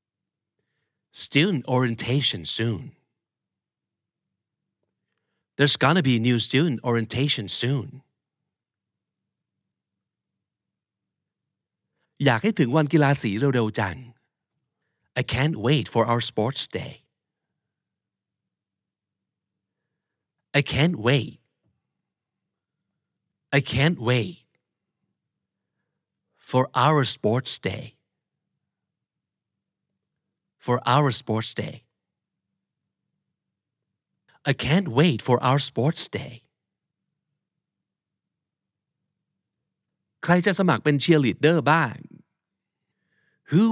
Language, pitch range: Thai, 115-155 Hz